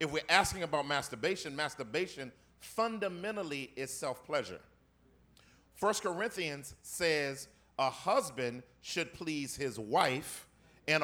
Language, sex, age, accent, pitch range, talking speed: English, male, 40-59, American, 135-180 Hz, 105 wpm